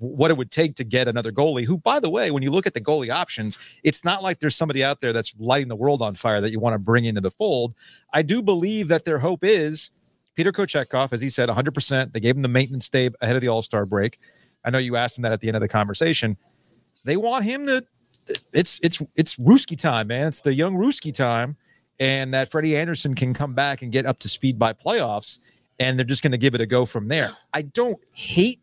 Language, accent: English, American